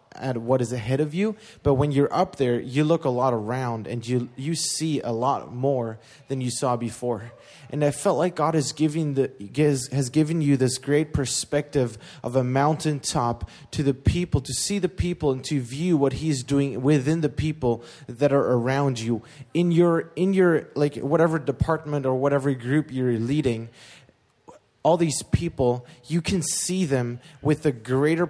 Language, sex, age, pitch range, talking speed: English, male, 20-39, 130-155 Hz, 180 wpm